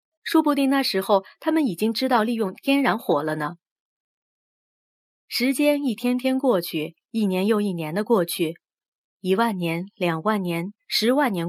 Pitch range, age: 175-250 Hz, 30-49